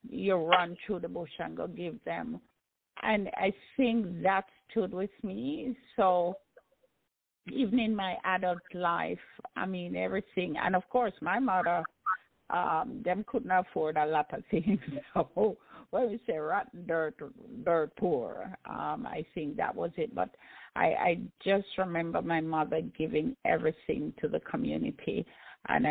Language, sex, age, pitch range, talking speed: English, female, 50-69, 170-230 Hz, 150 wpm